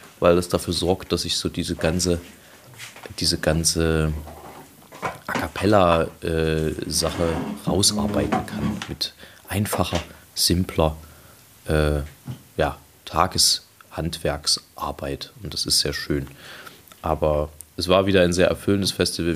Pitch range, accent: 80-95 Hz, German